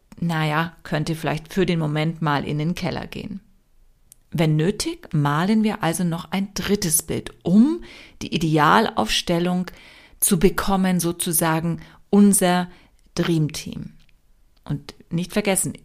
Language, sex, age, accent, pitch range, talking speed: German, female, 40-59, German, 160-205 Hz, 115 wpm